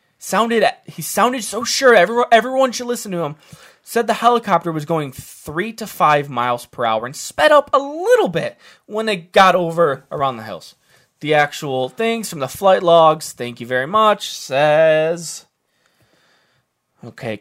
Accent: American